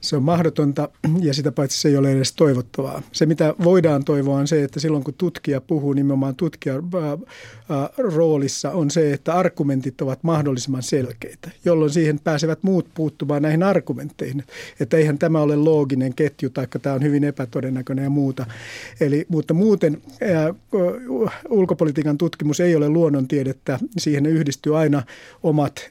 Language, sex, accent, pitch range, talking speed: Finnish, male, native, 140-165 Hz, 150 wpm